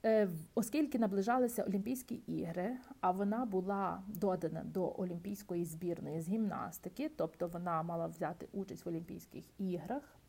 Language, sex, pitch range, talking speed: Ukrainian, female, 180-230 Hz, 120 wpm